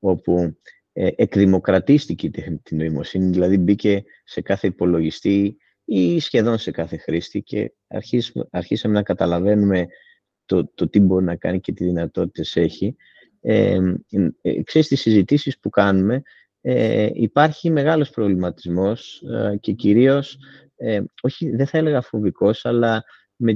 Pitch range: 95-125 Hz